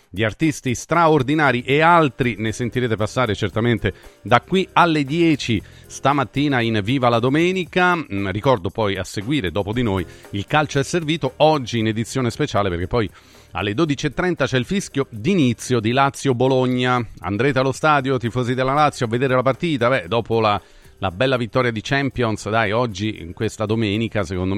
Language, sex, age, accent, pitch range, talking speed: Italian, male, 40-59, native, 100-130 Hz, 165 wpm